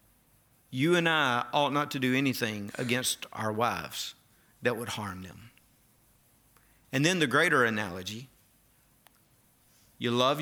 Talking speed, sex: 125 wpm, male